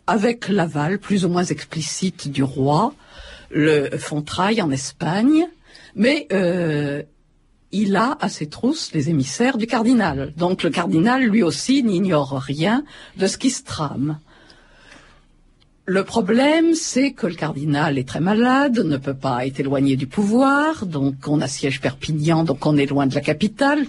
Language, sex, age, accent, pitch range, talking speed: French, female, 50-69, French, 145-230 Hz, 155 wpm